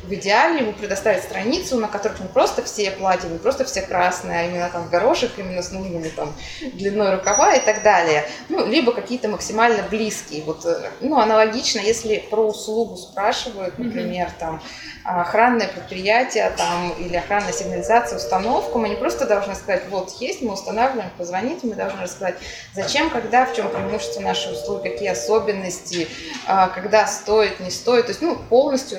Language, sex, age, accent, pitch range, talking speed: Russian, female, 20-39, native, 180-225 Hz, 160 wpm